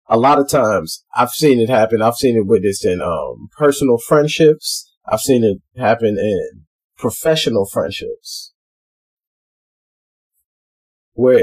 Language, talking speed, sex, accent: English, 125 wpm, male, American